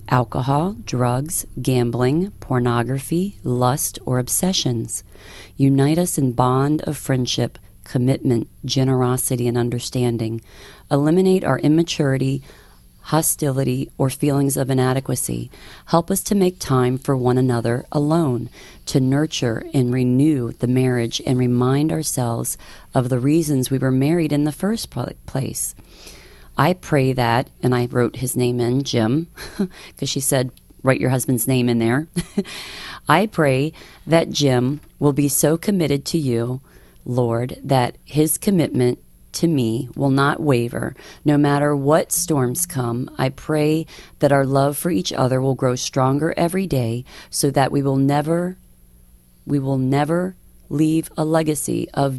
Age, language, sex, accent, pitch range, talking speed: 40-59, English, female, American, 125-150 Hz, 135 wpm